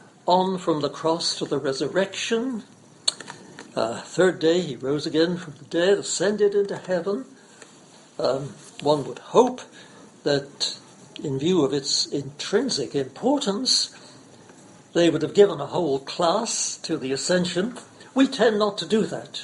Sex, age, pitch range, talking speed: male, 60-79, 140-195 Hz, 140 wpm